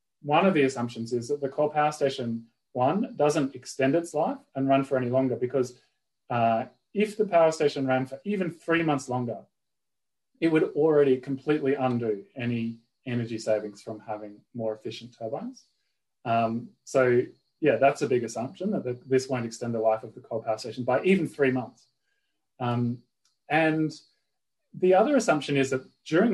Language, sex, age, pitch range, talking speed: English, male, 30-49, 120-150 Hz, 170 wpm